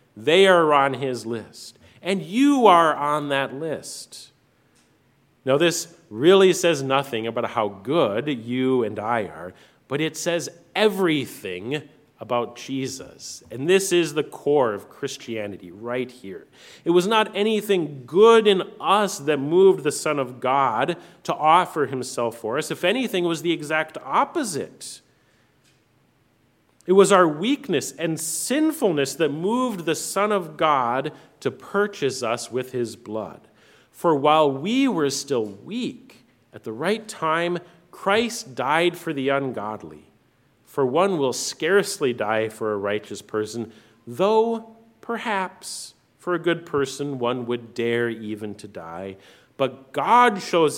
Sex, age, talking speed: male, 40-59, 140 wpm